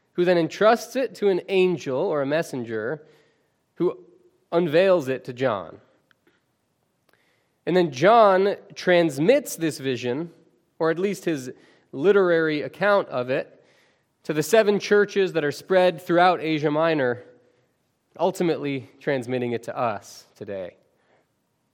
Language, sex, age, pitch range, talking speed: English, male, 20-39, 140-185 Hz, 125 wpm